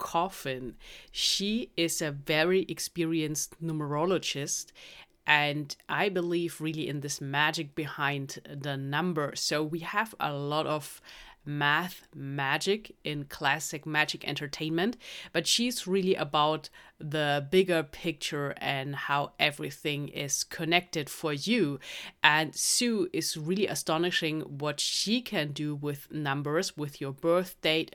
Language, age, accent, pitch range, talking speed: English, 30-49, German, 145-180 Hz, 125 wpm